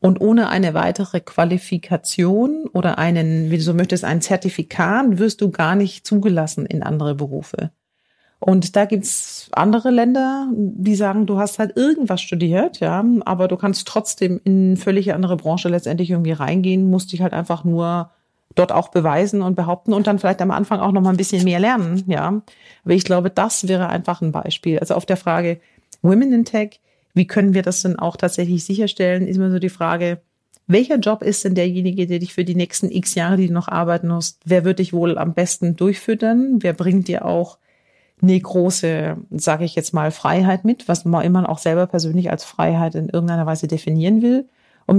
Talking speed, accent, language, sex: 195 wpm, German, German, female